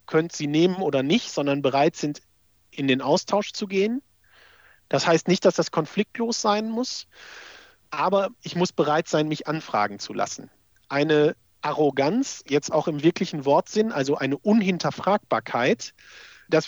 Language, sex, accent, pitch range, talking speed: German, male, German, 155-195 Hz, 150 wpm